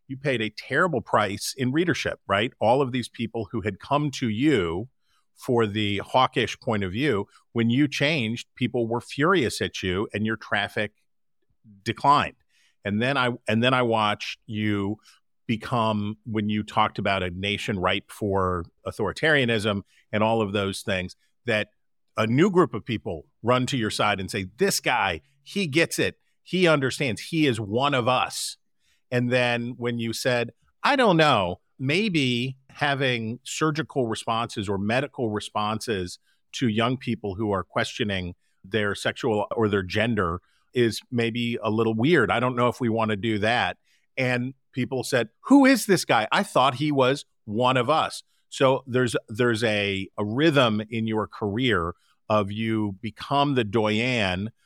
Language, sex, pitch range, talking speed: English, male, 105-130 Hz, 165 wpm